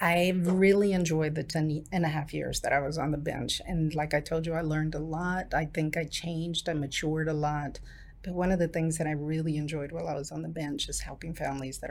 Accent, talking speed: American, 255 wpm